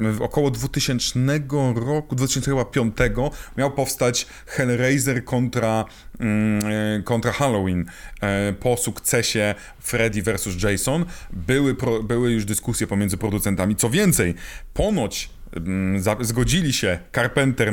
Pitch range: 100-125 Hz